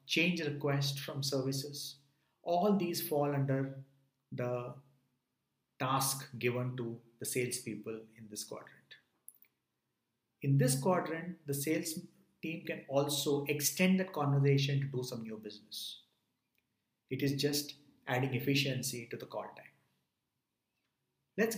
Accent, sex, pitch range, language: Indian, male, 125-150 Hz, English